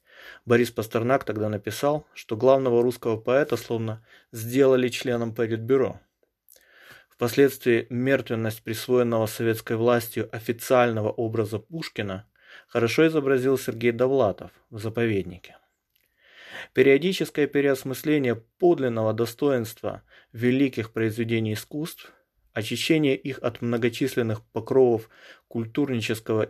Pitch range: 110-130 Hz